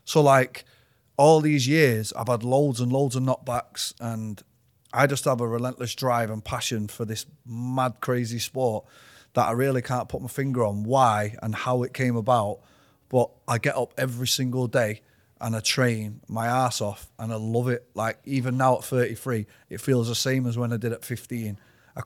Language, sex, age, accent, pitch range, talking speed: English, male, 30-49, British, 120-150 Hz, 200 wpm